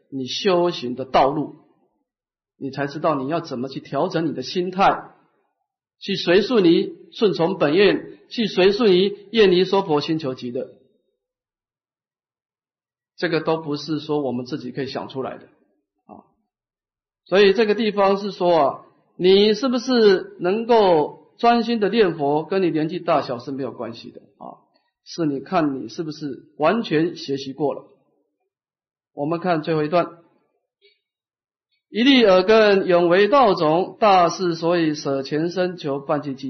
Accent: native